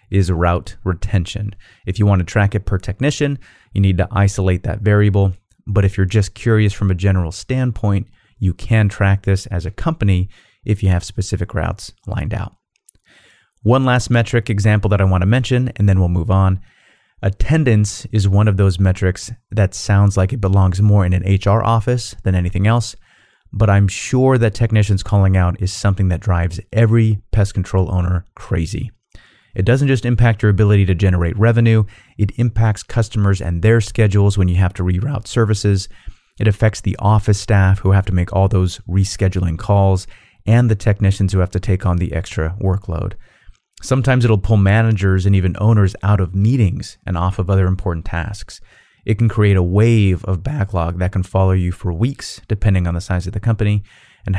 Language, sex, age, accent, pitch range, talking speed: English, male, 30-49, American, 95-110 Hz, 190 wpm